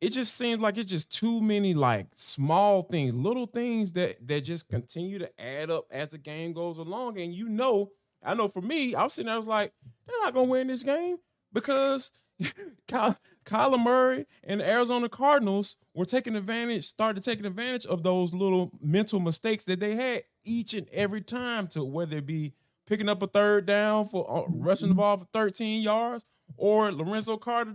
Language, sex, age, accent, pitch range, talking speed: English, male, 20-39, American, 185-240 Hz, 195 wpm